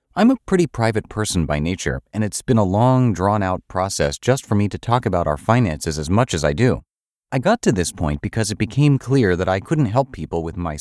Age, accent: 30-49, American